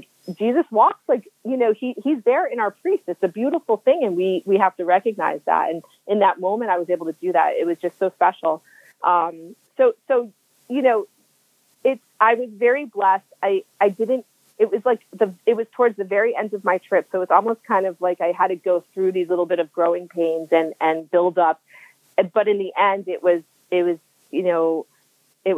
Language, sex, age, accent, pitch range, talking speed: English, female, 30-49, American, 170-205 Hz, 225 wpm